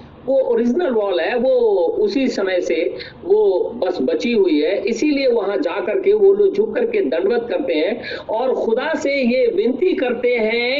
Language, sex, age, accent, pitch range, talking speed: Hindi, male, 50-69, native, 230-350 Hz, 155 wpm